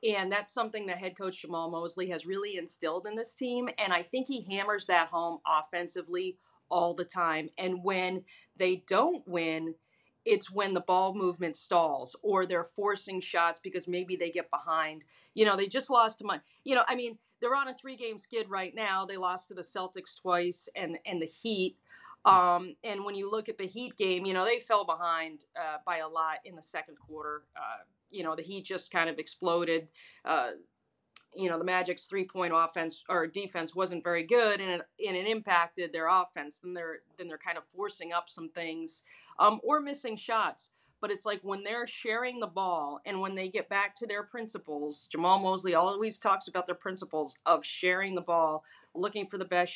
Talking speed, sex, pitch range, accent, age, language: 205 wpm, female, 170-205 Hz, American, 40-59, English